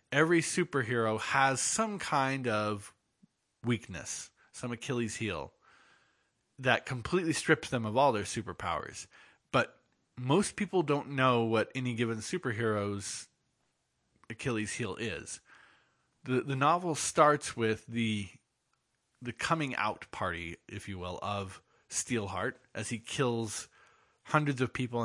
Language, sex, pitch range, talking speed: English, male, 110-135 Hz, 120 wpm